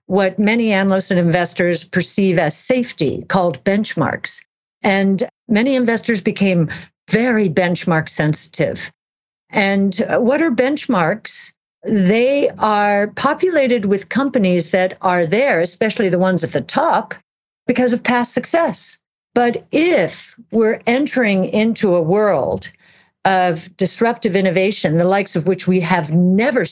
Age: 50-69